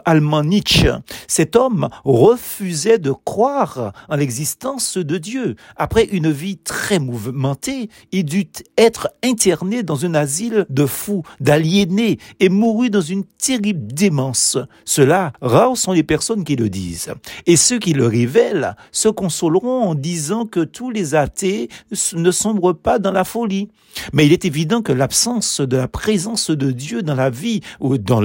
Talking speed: 160 wpm